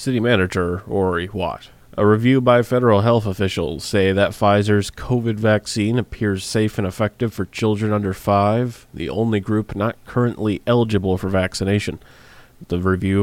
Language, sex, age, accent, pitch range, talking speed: English, male, 30-49, American, 95-110 Hz, 150 wpm